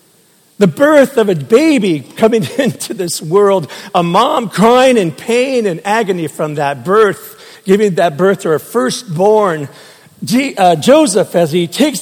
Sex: male